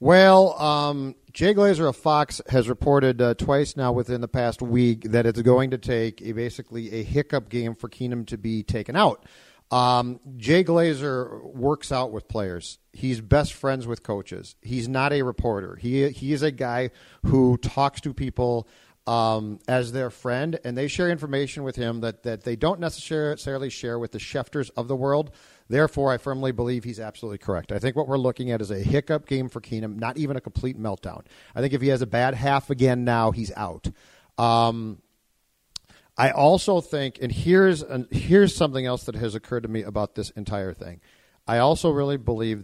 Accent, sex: American, male